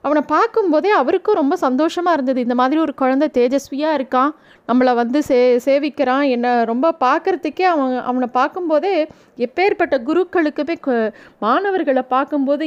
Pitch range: 245-315 Hz